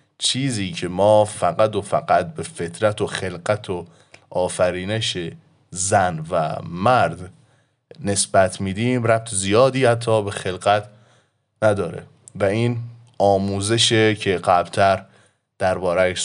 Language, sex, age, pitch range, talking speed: Persian, male, 20-39, 95-120 Hz, 105 wpm